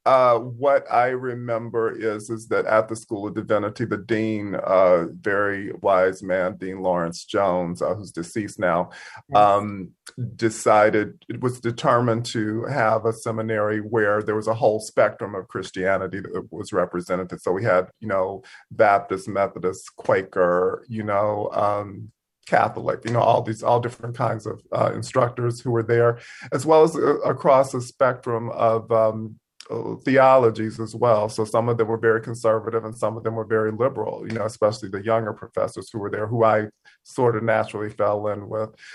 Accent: American